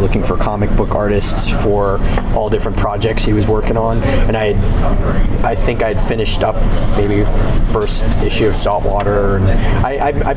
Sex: male